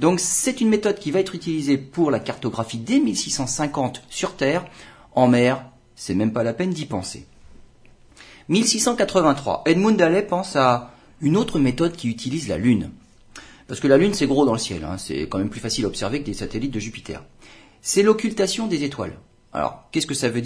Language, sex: French, male